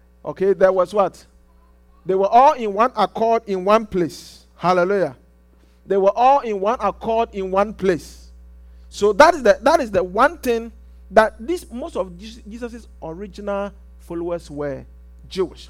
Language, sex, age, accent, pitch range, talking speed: English, male, 50-69, Nigerian, 145-240 Hz, 160 wpm